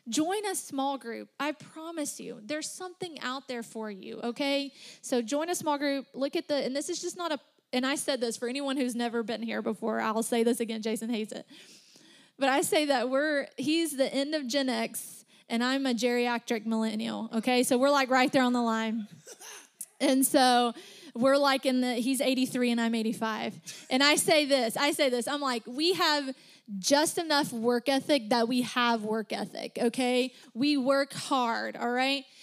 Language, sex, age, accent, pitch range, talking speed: English, female, 20-39, American, 240-290 Hz, 200 wpm